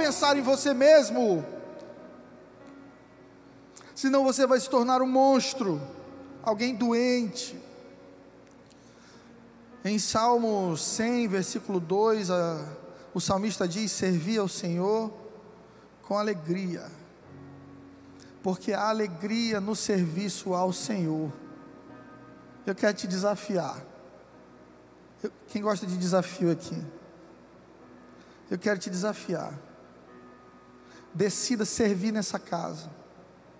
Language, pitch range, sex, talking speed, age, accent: Portuguese, 175-220 Hz, male, 95 wpm, 20-39, Brazilian